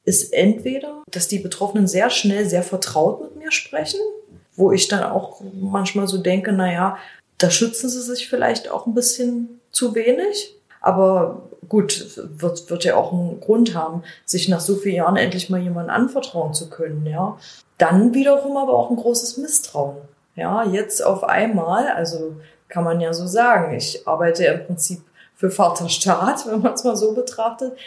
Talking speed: 175 wpm